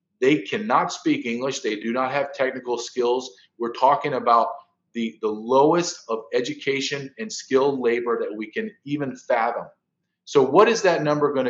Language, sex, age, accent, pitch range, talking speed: English, male, 40-59, American, 120-195 Hz, 165 wpm